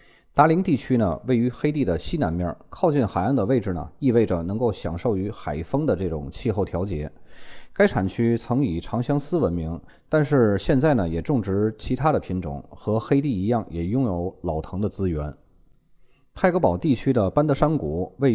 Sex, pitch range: male, 85-125 Hz